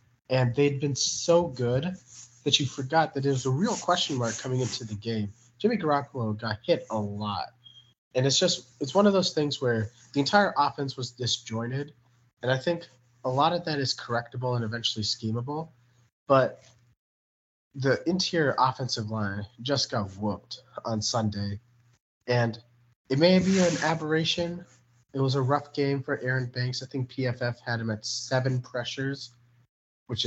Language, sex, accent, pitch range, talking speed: English, male, American, 115-145 Hz, 165 wpm